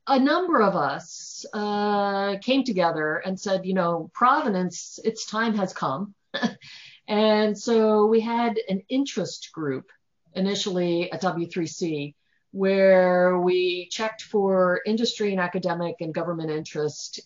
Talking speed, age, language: 125 wpm, 50-69, English